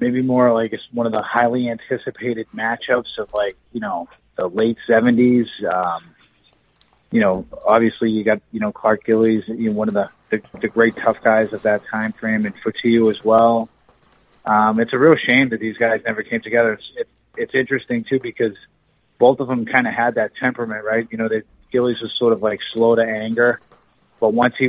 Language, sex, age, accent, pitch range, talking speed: English, male, 30-49, American, 110-125 Hz, 210 wpm